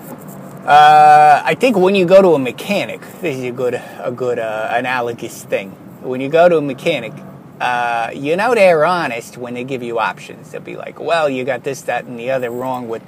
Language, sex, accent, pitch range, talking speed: English, male, American, 120-155 Hz, 215 wpm